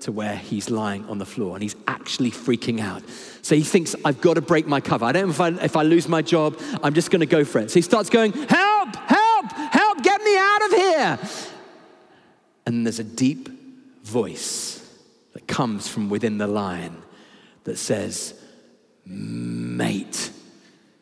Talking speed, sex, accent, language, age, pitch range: 185 wpm, male, British, English, 40-59, 150-255 Hz